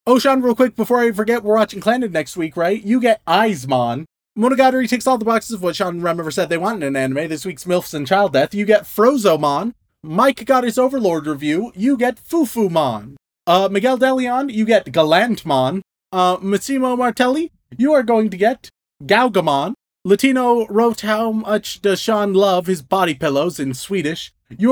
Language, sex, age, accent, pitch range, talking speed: English, male, 30-49, American, 180-245 Hz, 190 wpm